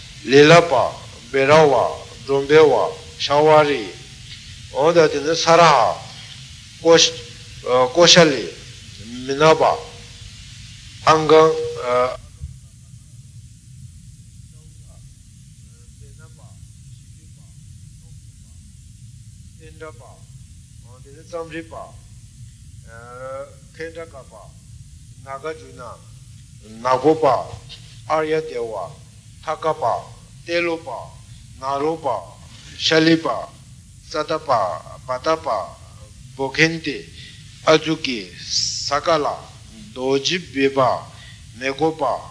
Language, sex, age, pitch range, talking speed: Italian, male, 60-79, 115-145 Hz, 50 wpm